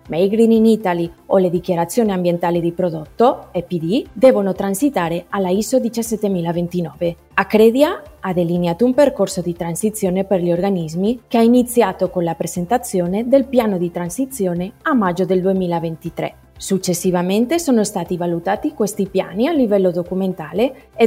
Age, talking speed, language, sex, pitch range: 30-49, 140 wpm, Italian, female, 180-215 Hz